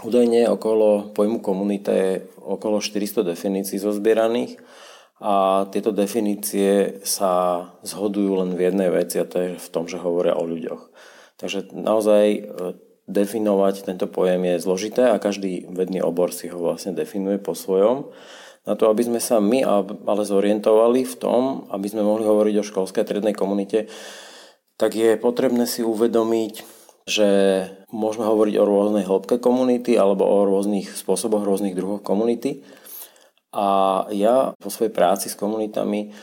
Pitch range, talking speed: 95-110 Hz, 145 wpm